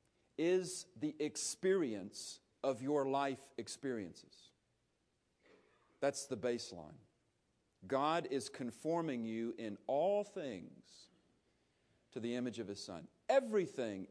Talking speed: 100 wpm